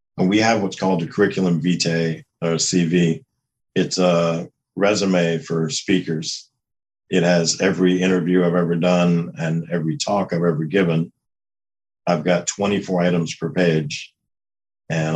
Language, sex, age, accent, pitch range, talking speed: English, male, 50-69, American, 80-90 Hz, 135 wpm